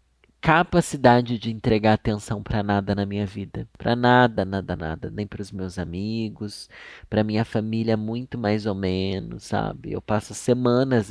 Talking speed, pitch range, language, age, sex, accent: 150 wpm, 105-130 Hz, Portuguese, 20-39, male, Brazilian